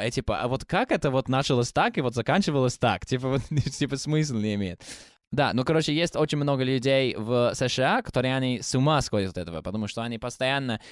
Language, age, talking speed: Russian, 20-39, 215 wpm